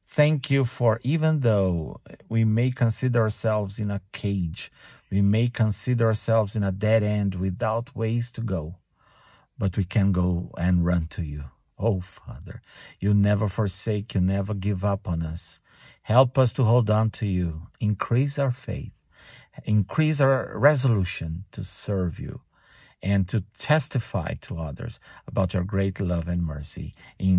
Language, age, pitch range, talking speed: English, 50-69, 95-125 Hz, 155 wpm